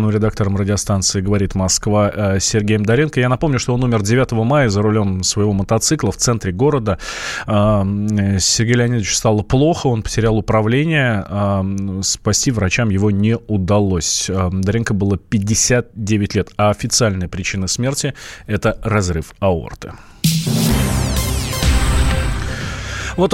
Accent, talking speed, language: native, 115 wpm, Russian